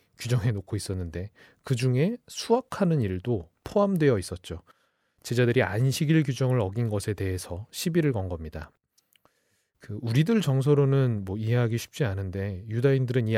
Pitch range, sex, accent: 105-155 Hz, male, native